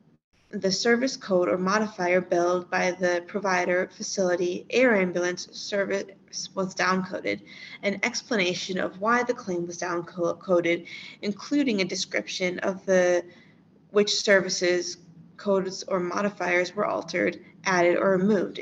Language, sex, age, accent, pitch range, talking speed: English, female, 20-39, American, 180-215 Hz, 120 wpm